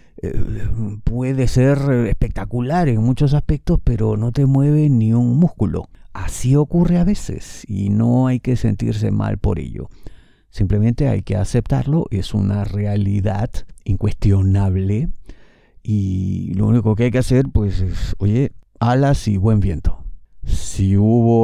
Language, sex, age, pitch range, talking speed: Spanish, male, 50-69, 100-125 Hz, 135 wpm